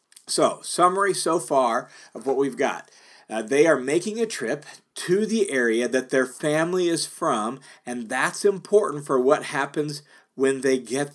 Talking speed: 165 wpm